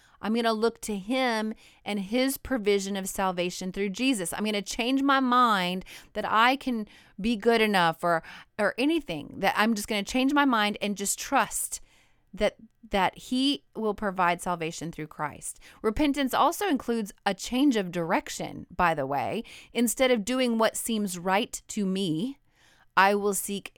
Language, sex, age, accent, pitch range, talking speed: English, female, 30-49, American, 195-250 Hz, 170 wpm